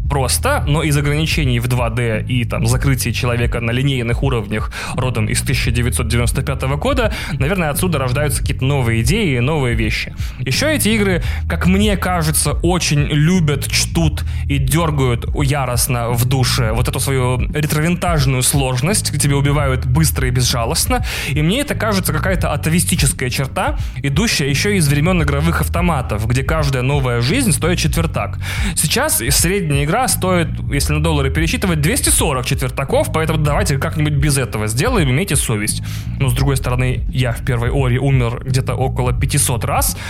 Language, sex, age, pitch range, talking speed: Russian, male, 20-39, 115-145 Hz, 150 wpm